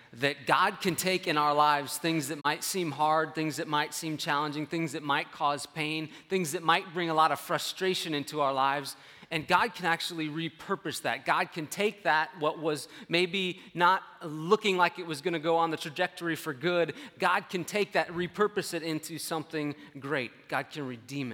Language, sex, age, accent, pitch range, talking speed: English, male, 30-49, American, 140-175 Hz, 200 wpm